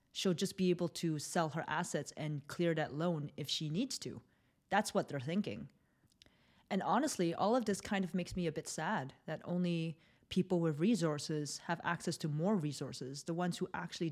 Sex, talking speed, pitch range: female, 195 wpm, 150-180 Hz